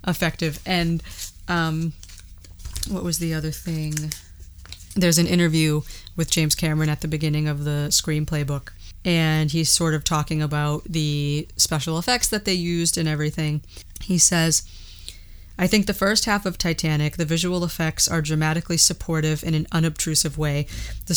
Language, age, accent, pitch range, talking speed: English, 30-49, American, 150-170 Hz, 155 wpm